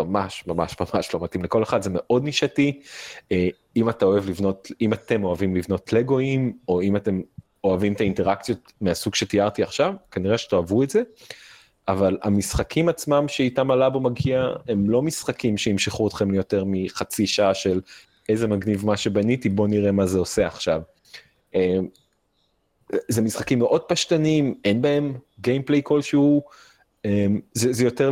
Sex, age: male, 30-49